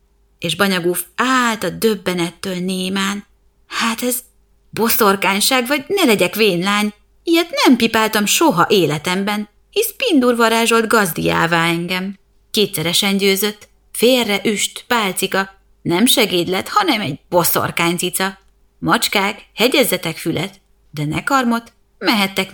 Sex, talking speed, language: female, 110 wpm, Hungarian